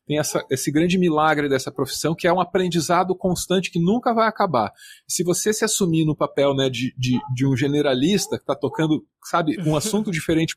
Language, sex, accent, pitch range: Portuguese, male, Brazilian, 130-195 Hz